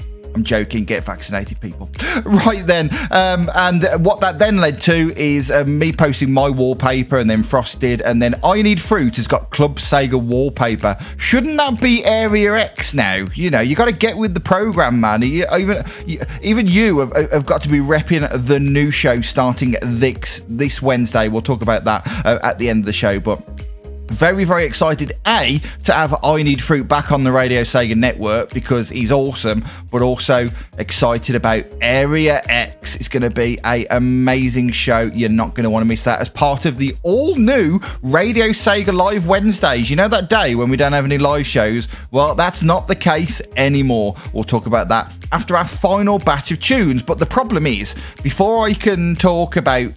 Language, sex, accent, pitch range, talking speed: English, male, British, 115-170 Hz, 195 wpm